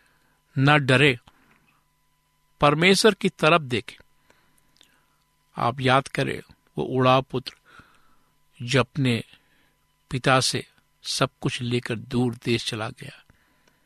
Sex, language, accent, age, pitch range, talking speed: male, Hindi, native, 60-79, 125-150 Hz, 100 wpm